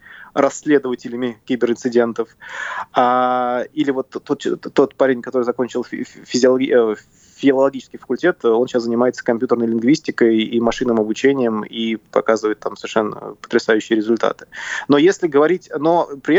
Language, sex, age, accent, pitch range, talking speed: Russian, male, 20-39, native, 120-140 Hz, 110 wpm